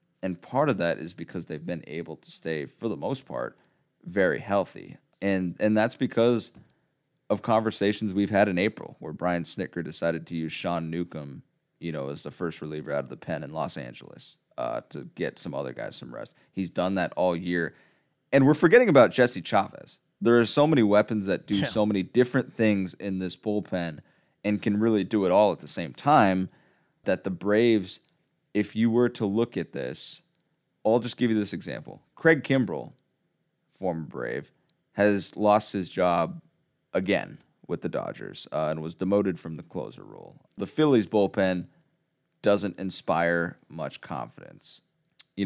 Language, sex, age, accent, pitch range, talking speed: English, male, 30-49, American, 85-115 Hz, 180 wpm